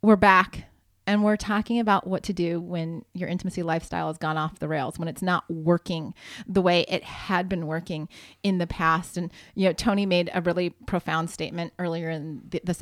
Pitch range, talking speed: 170-230 Hz, 200 wpm